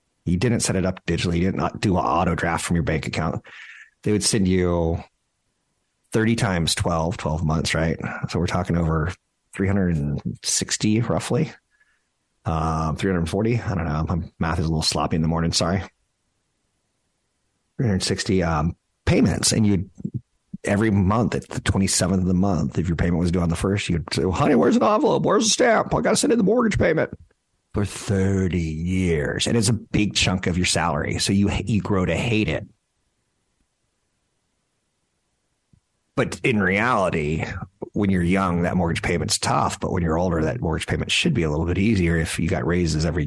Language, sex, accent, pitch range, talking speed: English, male, American, 80-100 Hz, 185 wpm